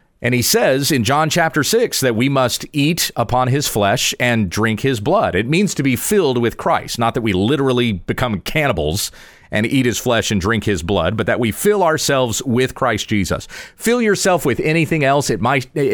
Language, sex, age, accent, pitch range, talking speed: English, male, 40-59, American, 115-150 Hz, 205 wpm